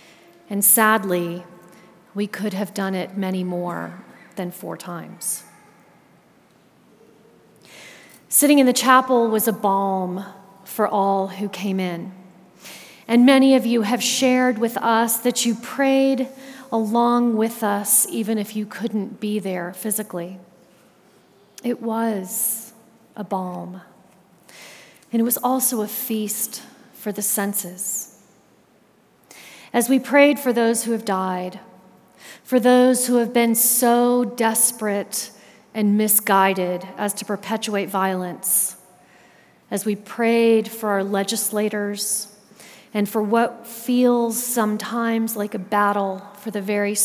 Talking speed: 120 wpm